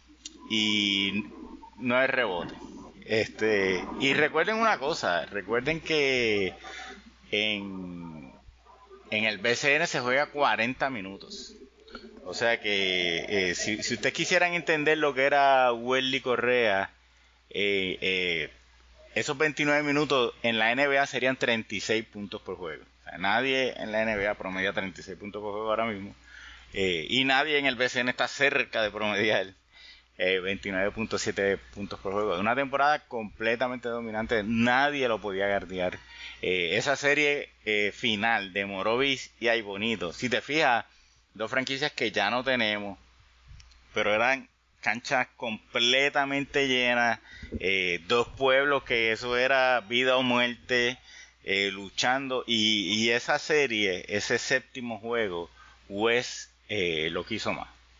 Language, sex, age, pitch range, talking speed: Spanish, male, 30-49, 100-135 Hz, 130 wpm